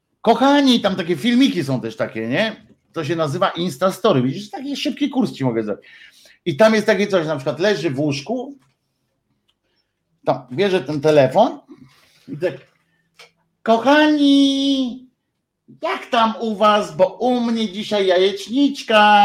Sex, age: male, 50-69